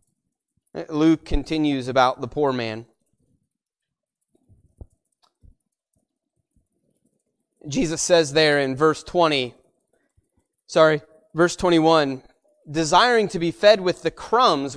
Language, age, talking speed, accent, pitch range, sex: English, 30-49, 90 wpm, American, 150-190 Hz, male